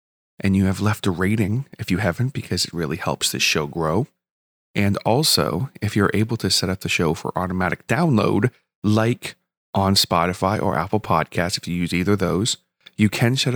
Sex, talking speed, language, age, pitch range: male, 195 wpm, English, 30-49, 95-120 Hz